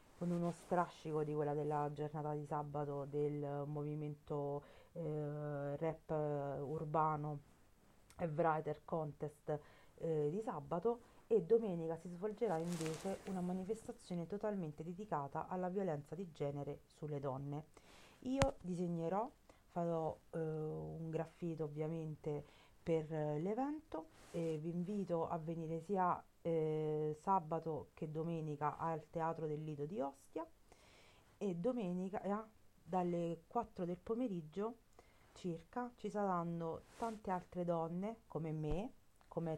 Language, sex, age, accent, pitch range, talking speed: Italian, female, 40-59, native, 155-190 Hz, 115 wpm